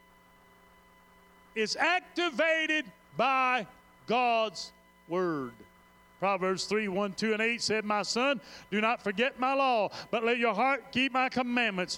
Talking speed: 130 wpm